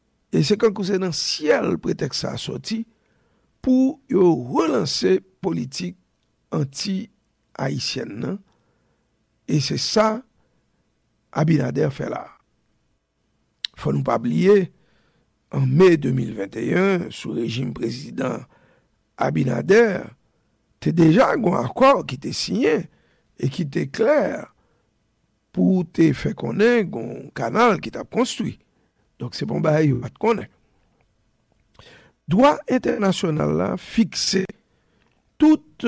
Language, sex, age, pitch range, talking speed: English, male, 60-79, 135-220 Hz, 105 wpm